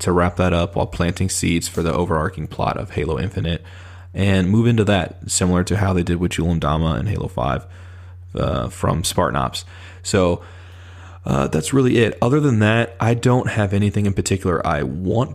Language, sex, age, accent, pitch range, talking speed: English, male, 20-39, American, 85-100 Hz, 195 wpm